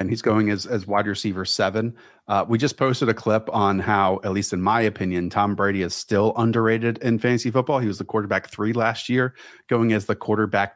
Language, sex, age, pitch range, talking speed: English, male, 30-49, 100-125 Hz, 225 wpm